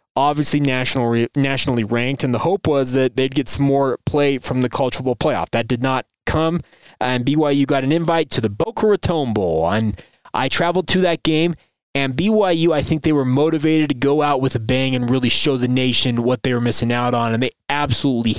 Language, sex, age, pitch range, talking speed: English, male, 20-39, 125-155 Hz, 215 wpm